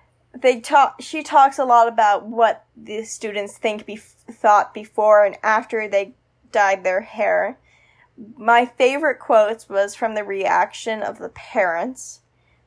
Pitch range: 220-280 Hz